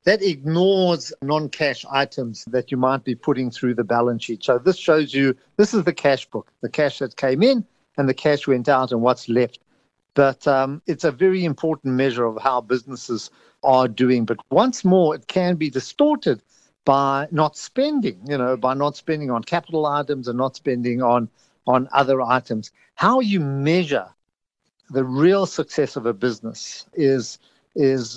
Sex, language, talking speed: male, English, 175 wpm